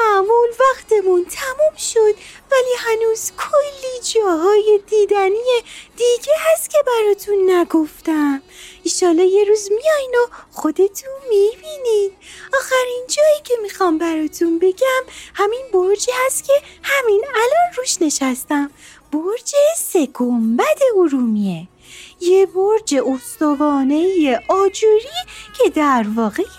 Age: 30-49